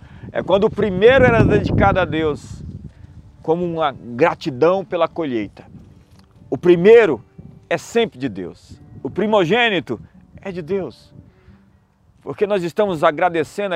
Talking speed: 120 wpm